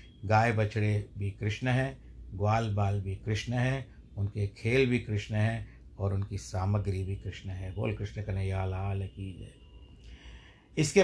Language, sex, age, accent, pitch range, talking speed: Hindi, male, 60-79, native, 100-120 Hz, 150 wpm